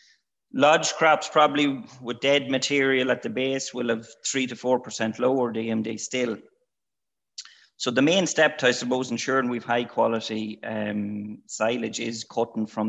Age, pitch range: 30-49, 110-135 Hz